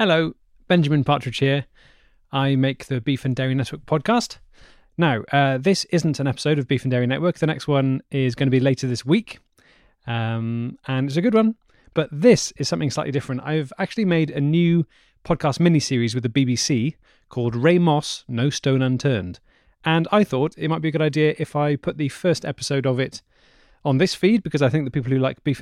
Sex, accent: male, British